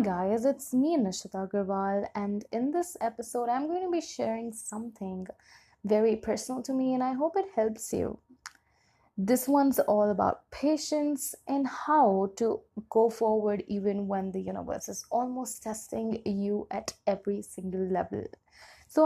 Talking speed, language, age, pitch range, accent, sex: 150 wpm, Hindi, 20-39, 210-270 Hz, native, female